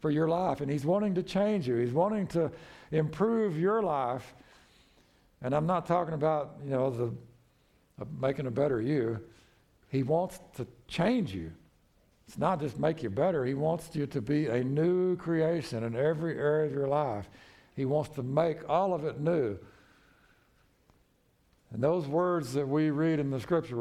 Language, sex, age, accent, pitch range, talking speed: English, male, 60-79, American, 120-165 Hz, 175 wpm